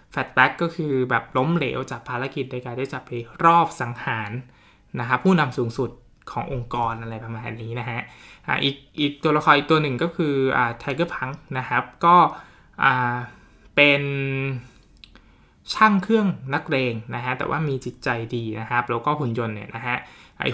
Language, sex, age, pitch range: Thai, male, 20-39, 120-145 Hz